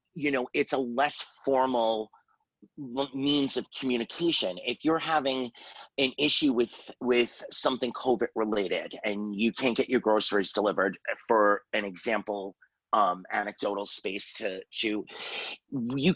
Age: 30-49